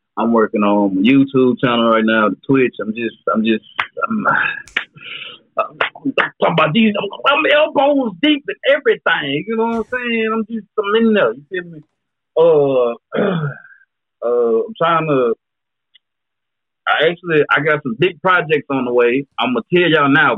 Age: 30-49